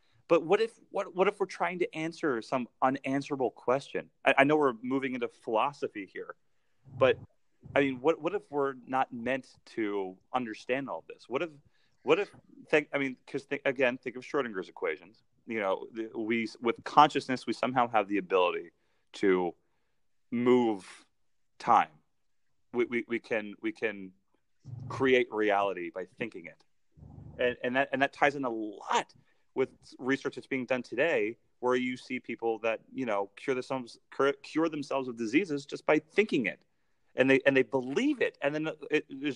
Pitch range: 120-155 Hz